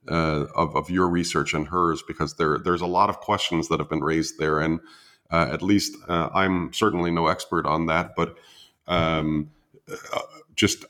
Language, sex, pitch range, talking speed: English, male, 80-90 Hz, 175 wpm